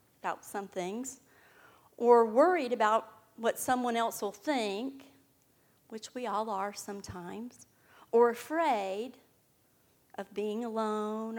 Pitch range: 205-245 Hz